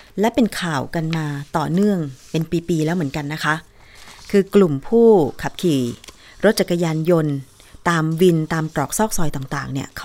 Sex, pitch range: female, 145-190 Hz